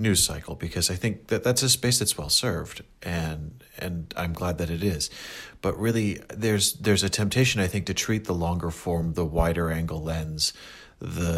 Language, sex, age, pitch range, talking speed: English, male, 40-59, 85-100 Hz, 195 wpm